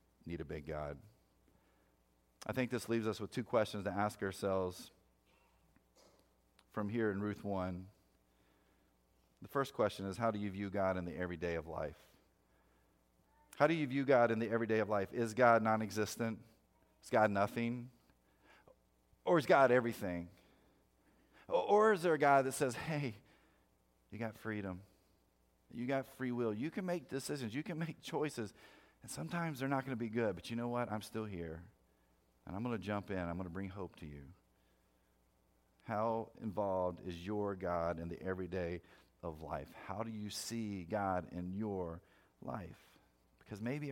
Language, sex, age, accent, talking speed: English, male, 40-59, American, 170 wpm